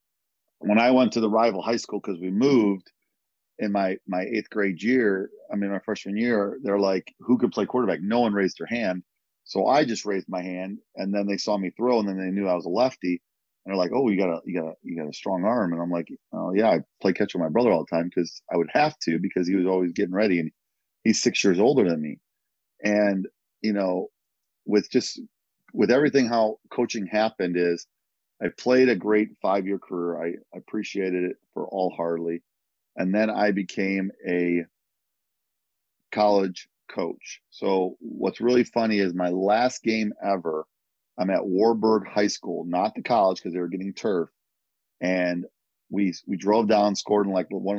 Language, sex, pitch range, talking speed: English, male, 90-105 Hz, 205 wpm